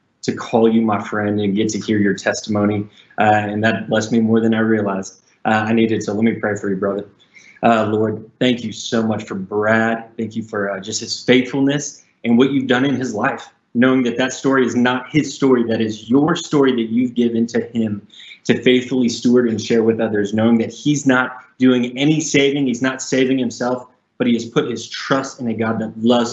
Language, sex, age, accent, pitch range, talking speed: English, male, 20-39, American, 105-125 Hz, 225 wpm